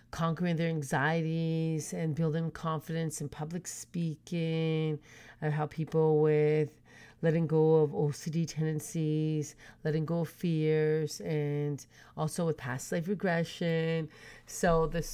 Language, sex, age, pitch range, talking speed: English, female, 30-49, 160-195 Hz, 120 wpm